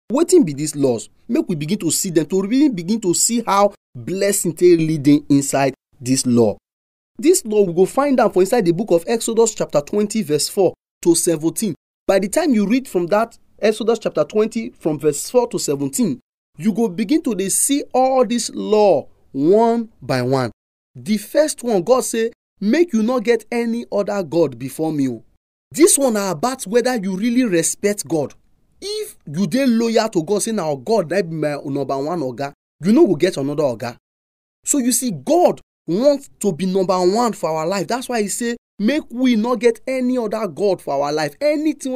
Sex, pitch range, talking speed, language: male, 165-235 Hz, 200 wpm, English